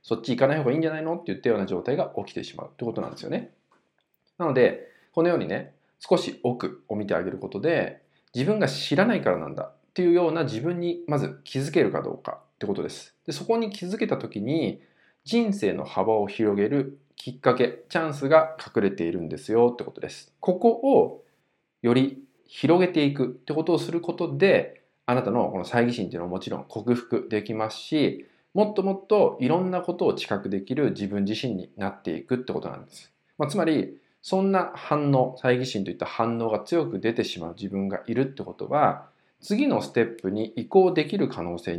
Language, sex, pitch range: Japanese, male, 105-175 Hz